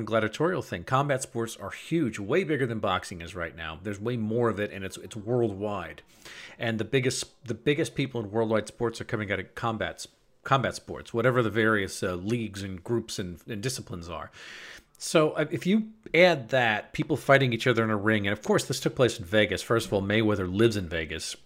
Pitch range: 100-125 Hz